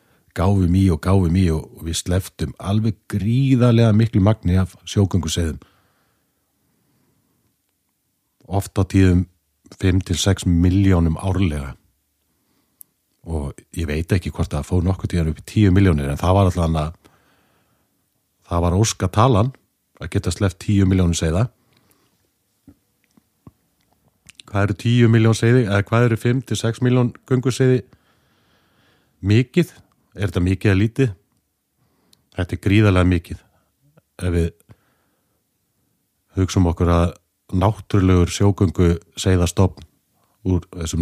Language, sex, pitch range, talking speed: English, male, 85-105 Hz, 110 wpm